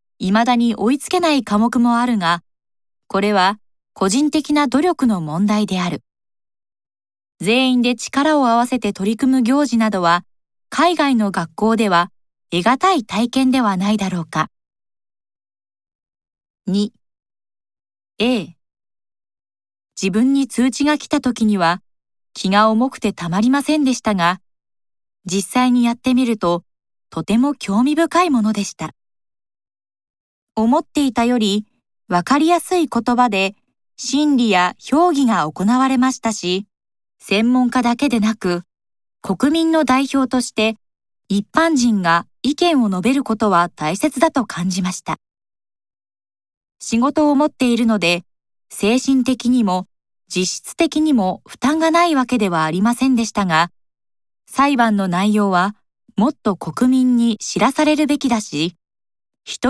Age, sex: 20-39, female